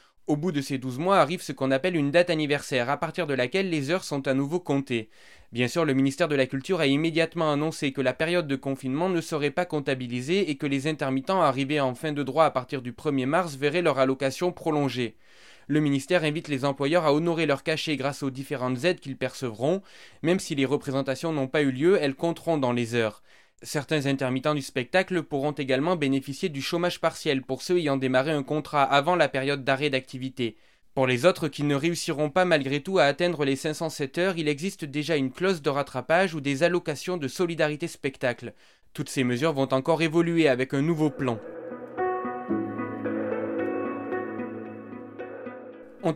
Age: 20-39